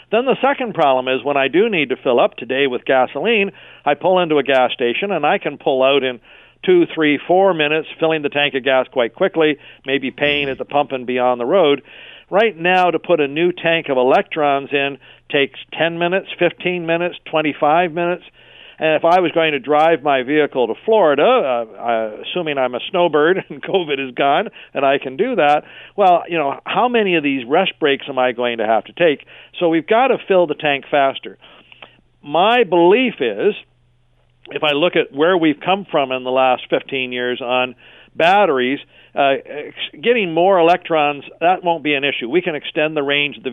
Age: 50-69